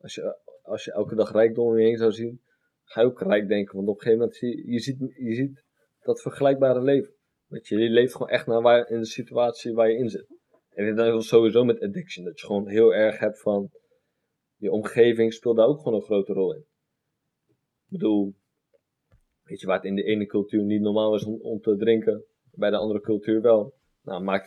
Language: Dutch